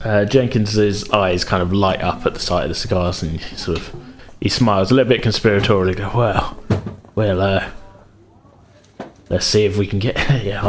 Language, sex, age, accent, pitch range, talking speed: English, male, 30-49, British, 100-130 Hz, 195 wpm